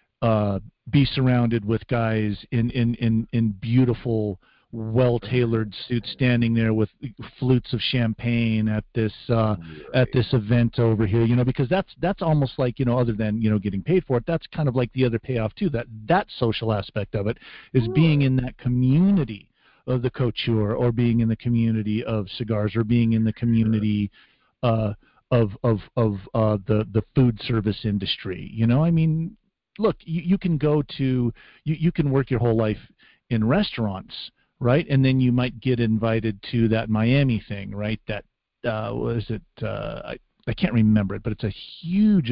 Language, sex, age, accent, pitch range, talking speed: English, male, 40-59, American, 110-130 Hz, 190 wpm